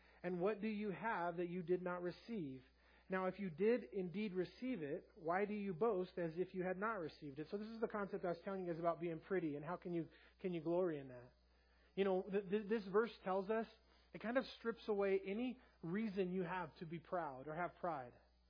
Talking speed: 235 wpm